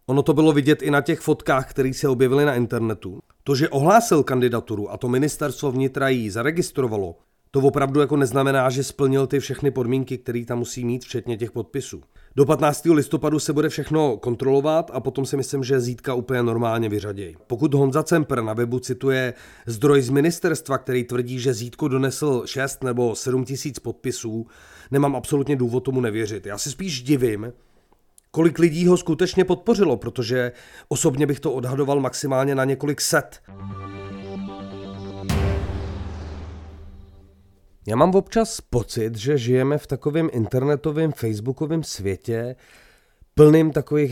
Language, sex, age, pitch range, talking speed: Czech, male, 30-49, 115-150 Hz, 150 wpm